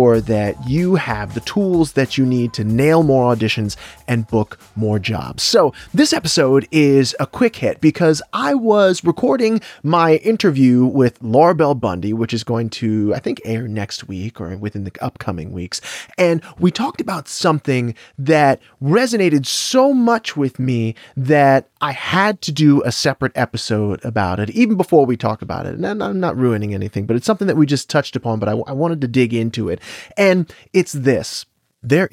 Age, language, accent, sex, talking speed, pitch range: 30-49, English, American, male, 185 wpm, 115-170 Hz